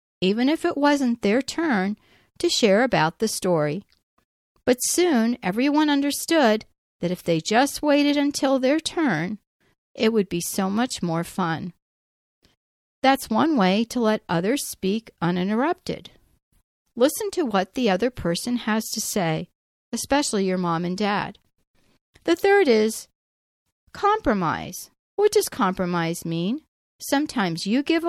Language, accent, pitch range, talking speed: English, American, 185-270 Hz, 135 wpm